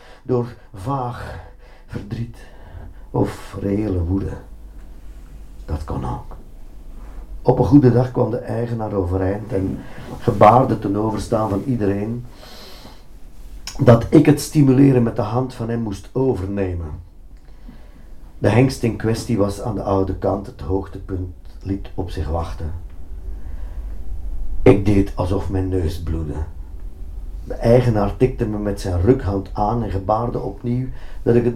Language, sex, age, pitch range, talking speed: Dutch, male, 50-69, 90-120 Hz, 130 wpm